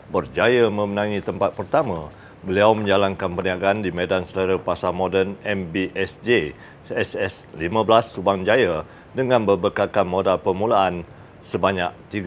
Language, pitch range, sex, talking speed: Malay, 95-105 Hz, male, 105 wpm